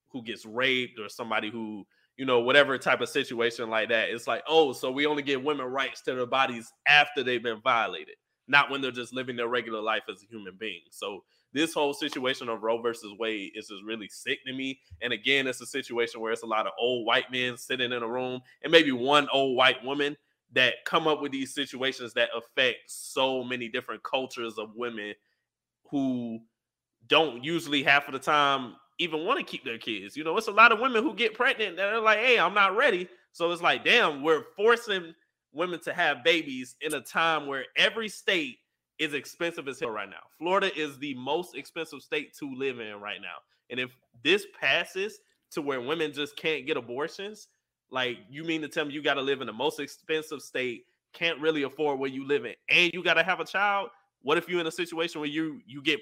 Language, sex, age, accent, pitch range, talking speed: English, male, 20-39, American, 125-165 Hz, 220 wpm